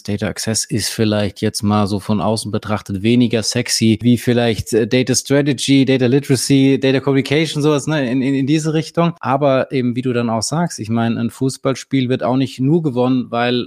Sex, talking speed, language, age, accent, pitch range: male, 195 wpm, German, 20-39, German, 115-135 Hz